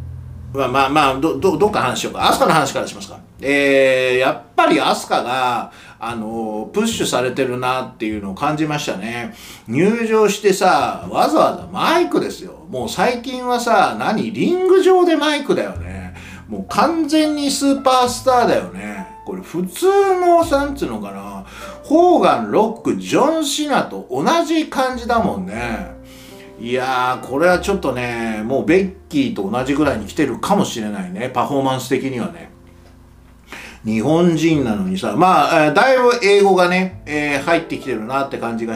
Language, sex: Japanese, male